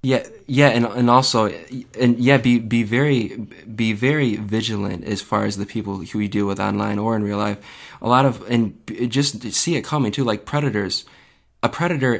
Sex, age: male, 20-39